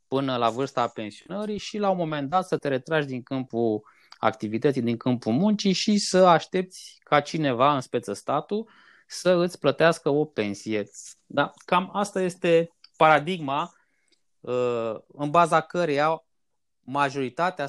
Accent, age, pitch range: native, 20-39, 120-165 Hz